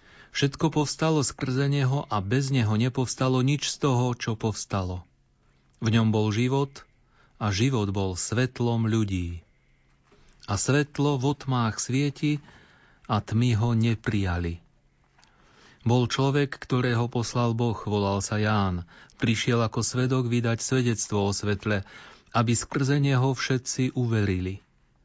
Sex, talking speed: male, 120 wpm